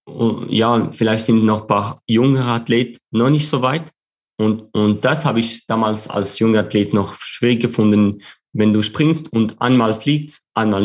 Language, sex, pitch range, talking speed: German, male, 105-120 Hz, 170 wpm